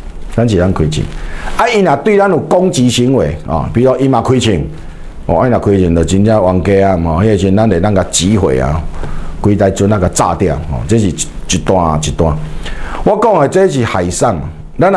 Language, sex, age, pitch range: Chinese, male, 50-69, 95-135 Hz